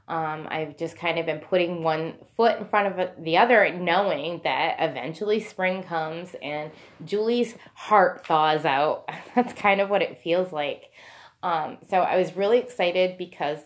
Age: 20-39